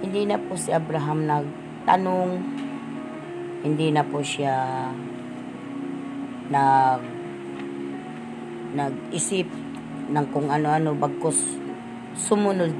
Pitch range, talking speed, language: 120-155 Hz, 80 wpm, Filipino